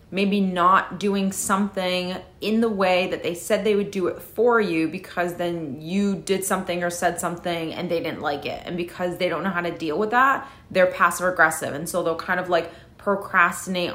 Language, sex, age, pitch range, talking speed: English, female, 30-49, 175-205 Hz, 210 wpm